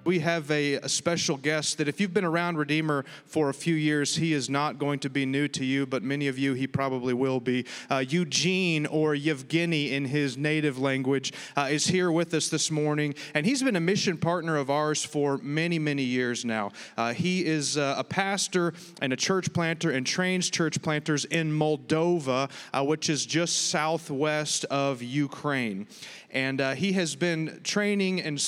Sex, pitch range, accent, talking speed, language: male, 140-165 Hz, American, 190 wpm, English